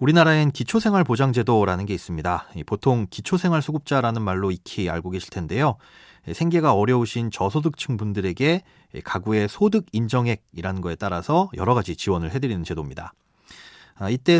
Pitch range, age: 100-150 Hz, 30-49